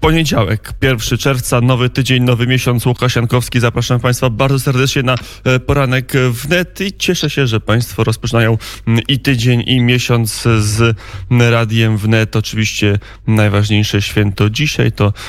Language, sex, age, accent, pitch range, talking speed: Polish, male, 30-49, native, 100-125 Hz, 135 wpm